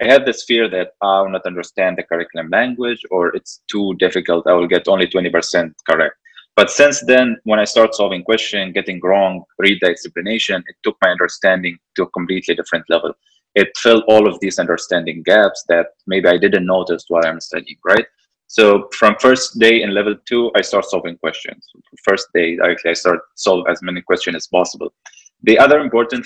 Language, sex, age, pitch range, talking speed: English, male, 20-39, 90-115 Hz, 195 wpm